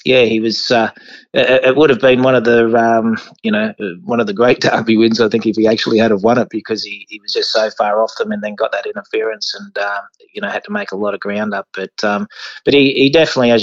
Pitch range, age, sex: 100-115 Hz, 20-39, male